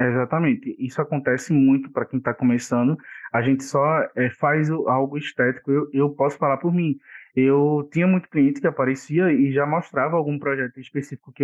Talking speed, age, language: 180 wpm, 20-39, Portuguese